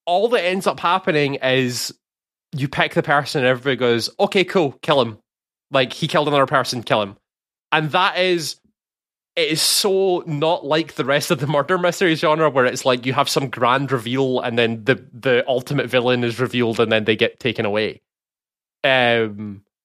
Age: 20-39